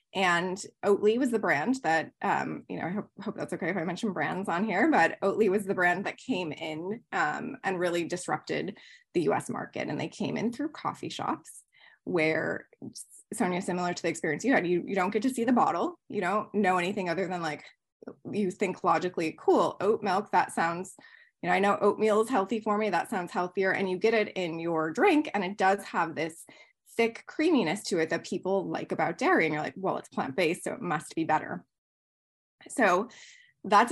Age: 20-39